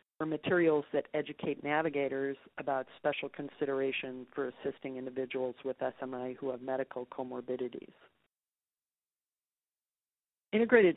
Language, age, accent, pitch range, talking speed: English, 40-59, American, 135-150 Hz, 100 wpm